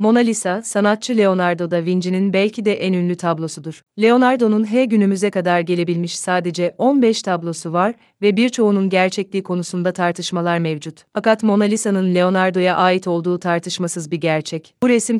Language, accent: Polish, Turkish